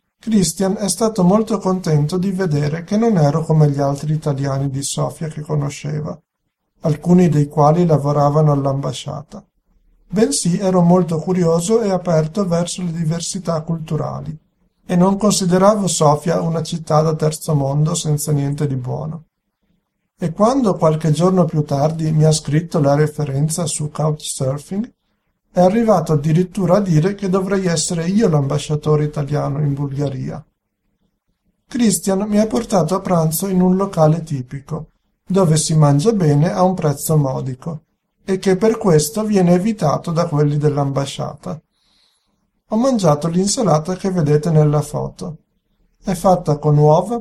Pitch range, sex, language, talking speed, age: 150-190 Hz, male, Italian, 140 wpm, 50-69